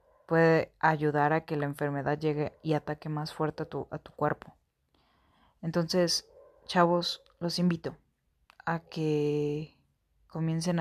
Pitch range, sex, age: 145-170 Hz, female, 30-49